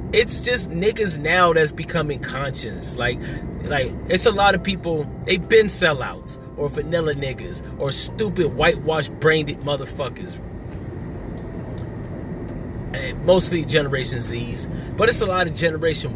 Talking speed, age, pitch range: 125 wpm, 30-49, 125-160 Hz